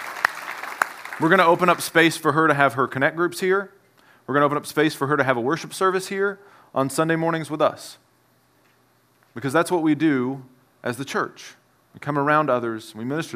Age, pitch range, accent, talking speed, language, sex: 30-49, 135-170 Hz, American, 210 wpm, English, male